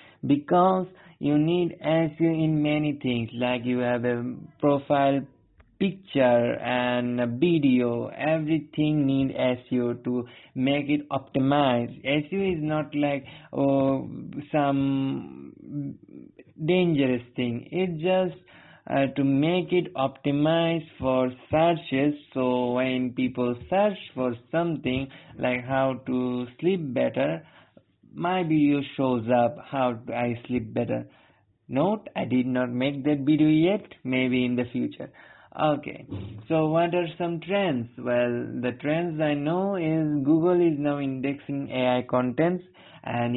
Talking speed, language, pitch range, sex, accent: 125 wpm, English, 125-155 Hz, male, Indian